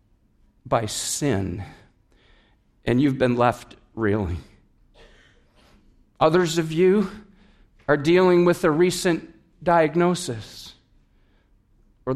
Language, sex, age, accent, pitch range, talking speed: English, male, 50-69, American, 135-210 Hz, 85 wpm